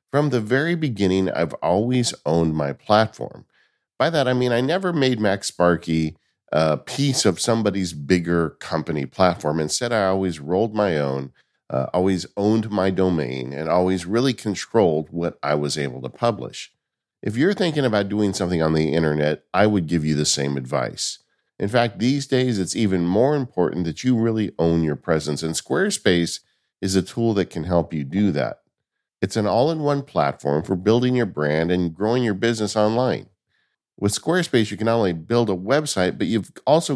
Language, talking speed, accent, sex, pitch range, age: English, 180 wpm, American, male, 80-115 Hz, 50-69